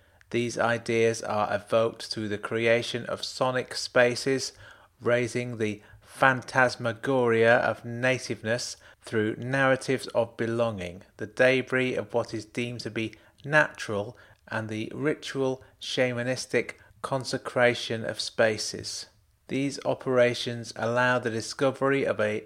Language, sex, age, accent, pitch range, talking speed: English, male, 30-49, British, 105-125 Hz, 110 wpm